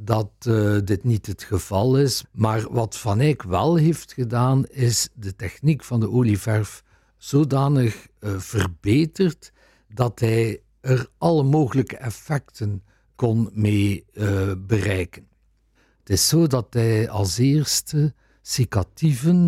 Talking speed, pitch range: 125 wpm, 100-135 Hz